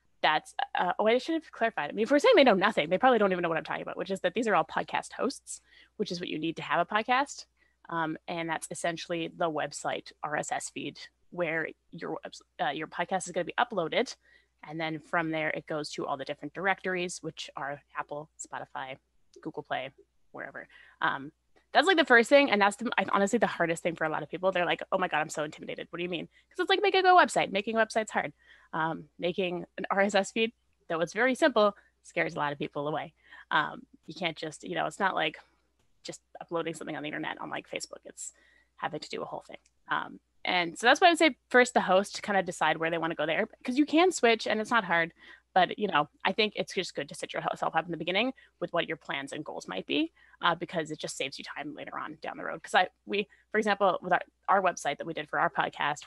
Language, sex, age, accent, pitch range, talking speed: English, female, 20-39, American, 165-235 Hz, 250 wpm